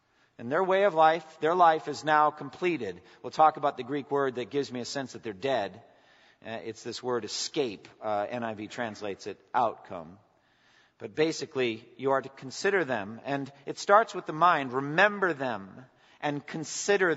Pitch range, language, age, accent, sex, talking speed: 145-185 Hz, English, 50-69, American, male, 175 wpm